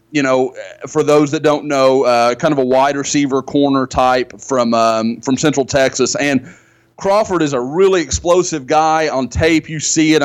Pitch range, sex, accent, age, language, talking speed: 130-155 Hz, male, American, 30-49, English, 185 wpm